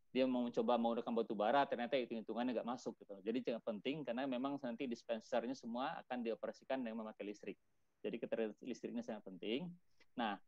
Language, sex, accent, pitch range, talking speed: Indonesian, male, native, 115-150 Hz, 165 wpm